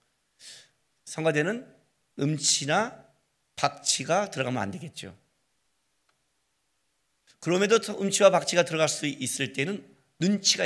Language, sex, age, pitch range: Korean, male, 40-59, 125-180 Hz